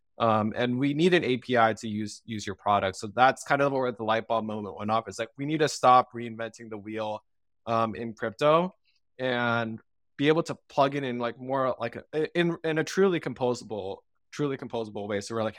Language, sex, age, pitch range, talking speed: English, male, 20-39, 110-125 Hz, 215 wpm